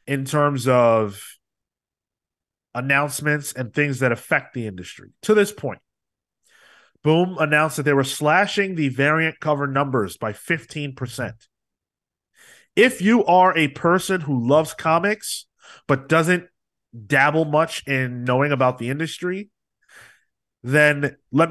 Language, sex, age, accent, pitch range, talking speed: English, male, 30-49, American, 130-165 Hz, 125 wpm